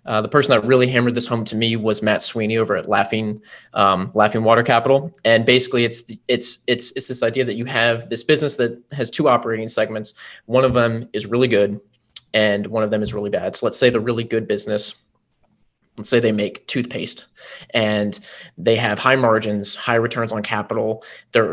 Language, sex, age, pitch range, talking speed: English, male, 20-39, 110-125 Hz, 205 wpm